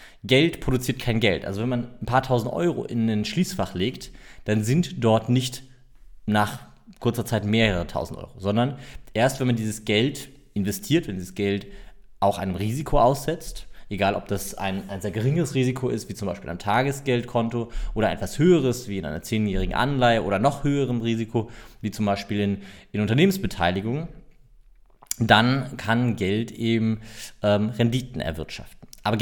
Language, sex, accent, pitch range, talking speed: German, male, German, 105-135 Hz, 160 wpm